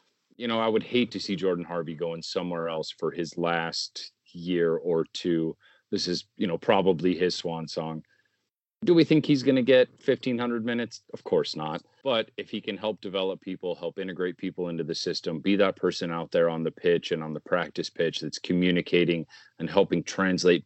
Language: English